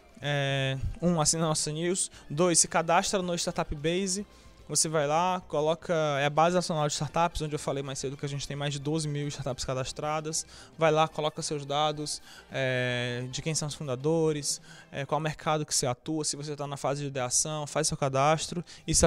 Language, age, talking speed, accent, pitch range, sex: Portuguese, 20-39, 205 wpm, Brazilian, 145-175 Hz, male